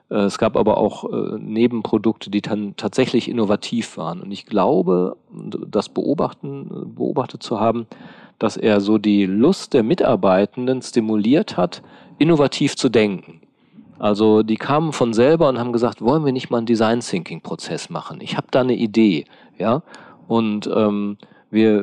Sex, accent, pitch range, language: male, German, 105-120 Hz, German